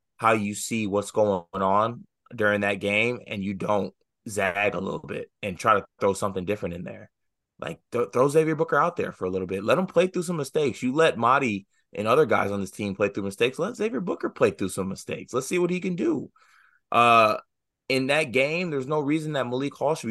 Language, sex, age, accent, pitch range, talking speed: English, male, 20-39, American, 100-130 Hz, 230 wpm